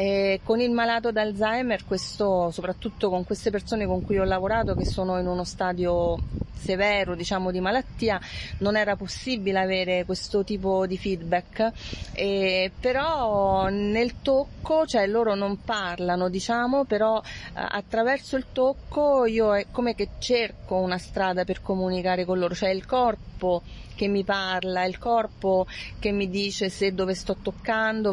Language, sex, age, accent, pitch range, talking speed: Italian, female, 30-49, native, 185-230 Hz, 150 wpm